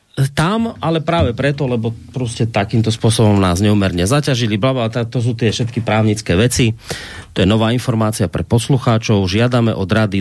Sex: male